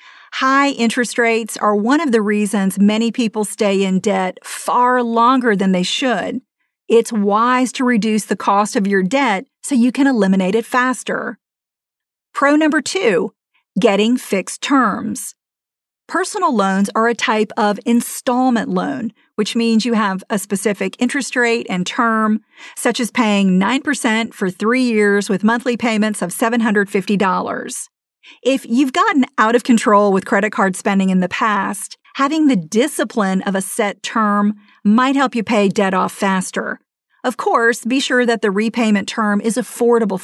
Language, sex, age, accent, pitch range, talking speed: English, female, 40-59, American, 205-255 Hz, 160 wpm